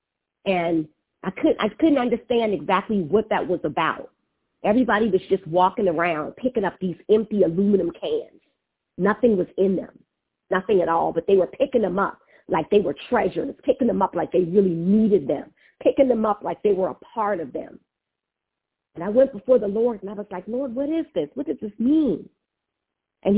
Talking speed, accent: 195 wpm, American